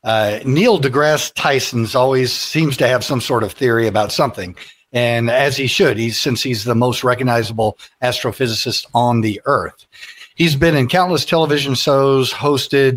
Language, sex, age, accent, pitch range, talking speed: English, male, 50-69, American, 115-140 Hz, 160 wpm